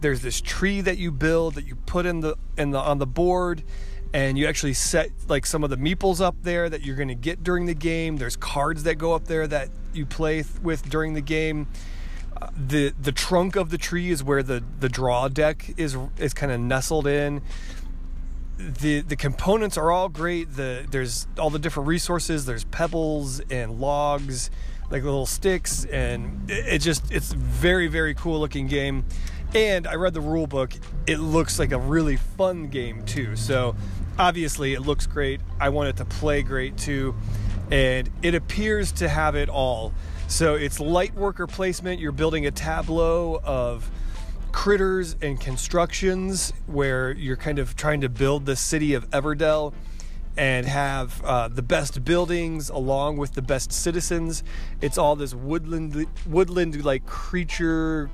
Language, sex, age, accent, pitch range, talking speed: English, male, 30-49, American, 130-165 Hz, 175 wpm